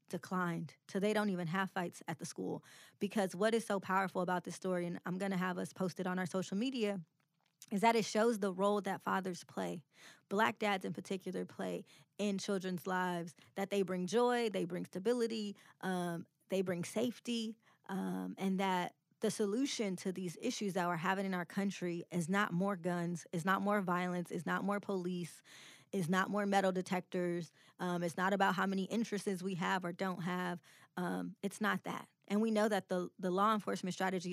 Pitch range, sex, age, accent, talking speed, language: 180-205 Hz, female, 20-39, American, 200 wpm, English